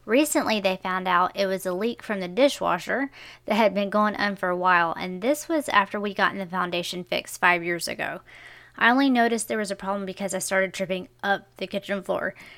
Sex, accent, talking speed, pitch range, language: female, American, 220 wpm, 190-230 Hz, English